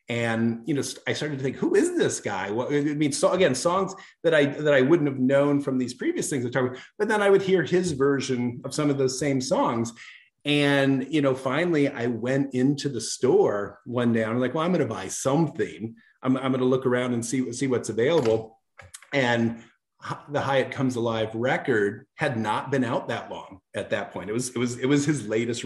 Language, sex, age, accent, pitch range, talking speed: English, male, 40-59, American, 115-145 Hz, 230 wpm